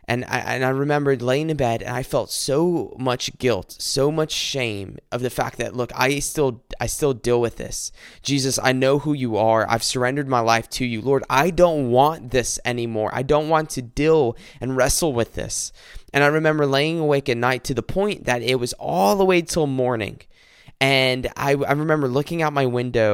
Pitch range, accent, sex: 115-140 Hz, American, male